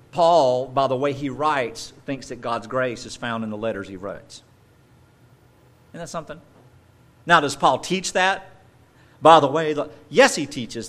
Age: 50-69